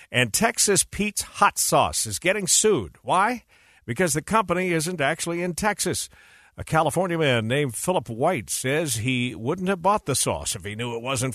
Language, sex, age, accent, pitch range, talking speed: English, male, 50-69, American, 115-155 Hz, 180 wpm